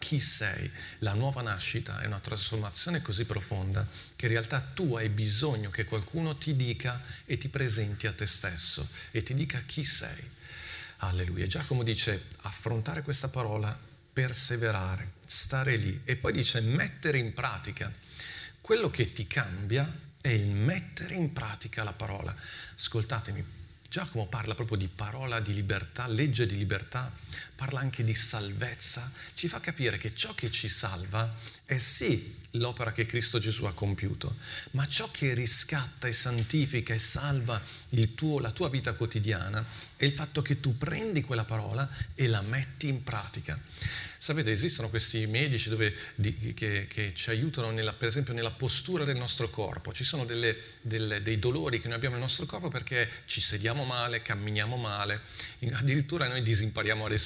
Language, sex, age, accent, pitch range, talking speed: Italian, male, 40-59, native, 110-135 Hz, 155 wpm